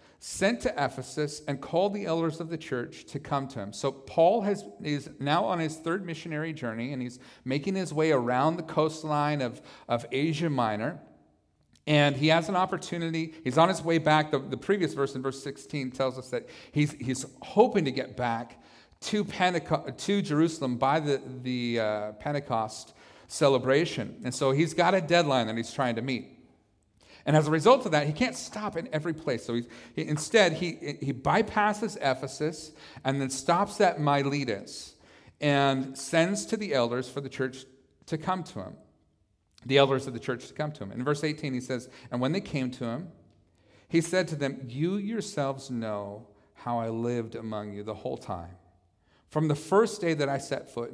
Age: 40-59